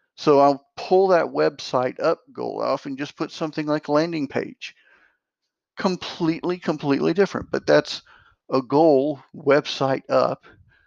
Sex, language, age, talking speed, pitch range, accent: male, English, 50-69, 135 wpm, 135-185 Hz, American